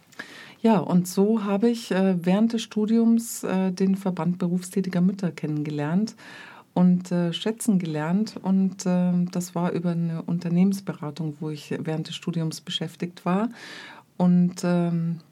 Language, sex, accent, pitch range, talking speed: German, female, German, 175-205 Hz, 120 wpm